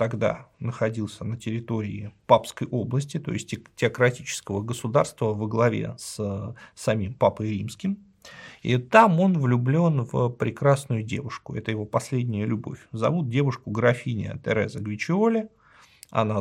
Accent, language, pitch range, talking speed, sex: native, Russian, 110-145 Hz, 120 wpm, male